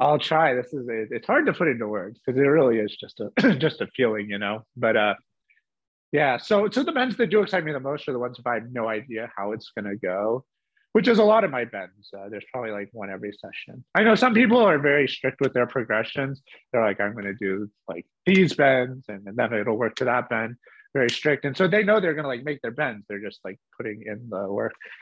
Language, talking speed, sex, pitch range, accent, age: English, 250 wpm, male, 110-170 Hz, American, 30-49